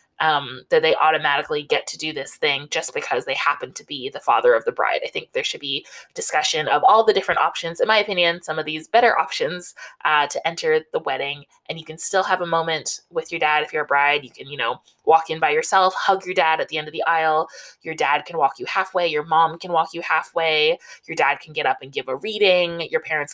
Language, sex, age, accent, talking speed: English, female, 20-39, American, 250 wpm